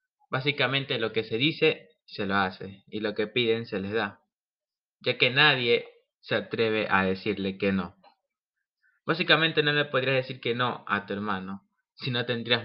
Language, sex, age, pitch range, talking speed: Spanish, male, 20-39, 110-155 Hz, 175 wpm